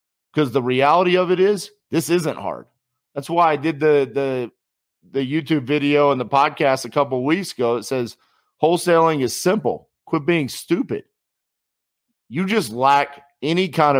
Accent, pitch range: American, 125-155 Hz